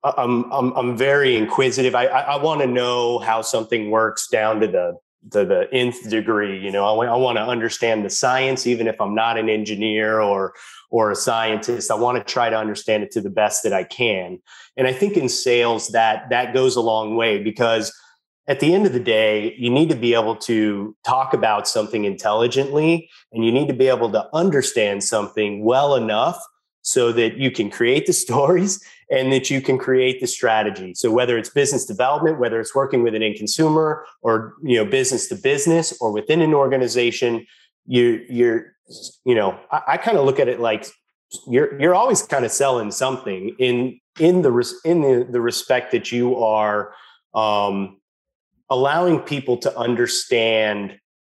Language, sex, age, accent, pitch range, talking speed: English, male, 30-49, American, 110-135 Hz, 185 wpm